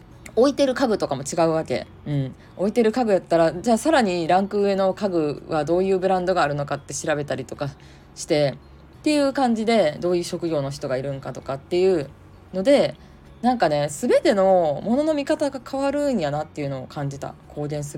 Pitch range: 145-225 Hz